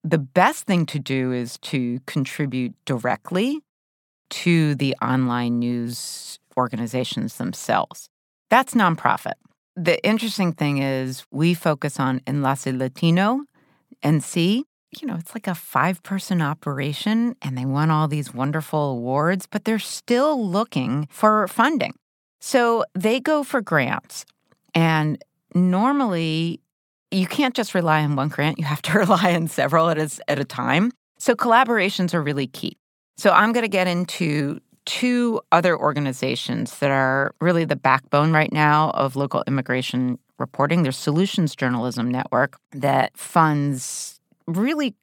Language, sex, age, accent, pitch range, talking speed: English, female, 30-49, American, 140-190 Hz, 140 wpm